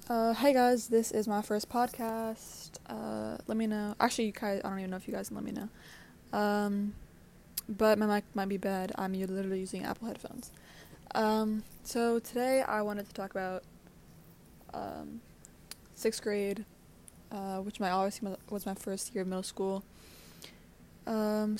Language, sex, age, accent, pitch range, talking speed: English, female, 20-39, American, 190-220 Hz, 170 wpm